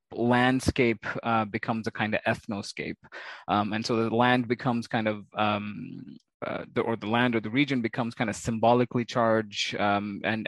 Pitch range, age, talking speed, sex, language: 110-125 Hz, 20-39, 180 wpm, male, English